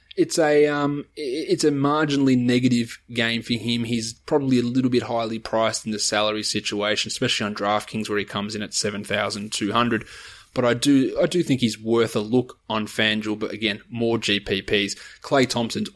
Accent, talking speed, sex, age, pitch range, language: Australian, 180 wpm, male, 20-39, 105-125 Hz, English